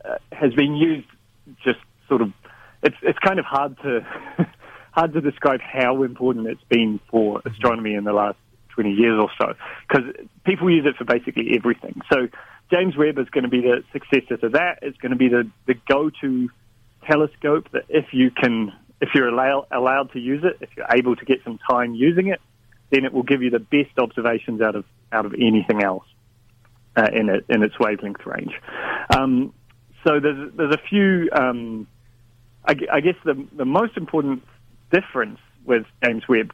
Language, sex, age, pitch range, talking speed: English, male, 40-59, 115-140 Hz, 185 wpm